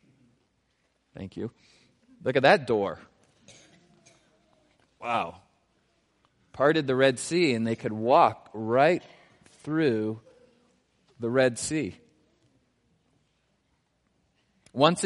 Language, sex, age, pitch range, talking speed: English, male, 40-59, 110-150 Hz, 85 wpm